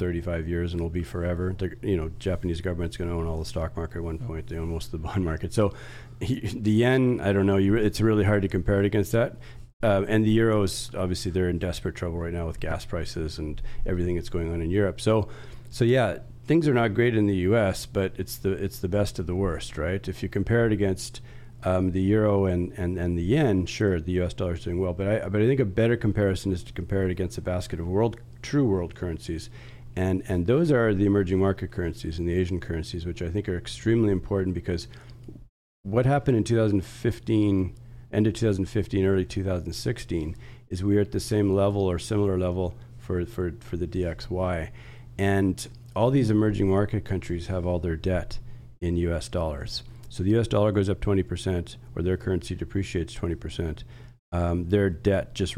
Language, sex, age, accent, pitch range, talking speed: English, male, 40-59, American, 90-115 Hz, 215 wpm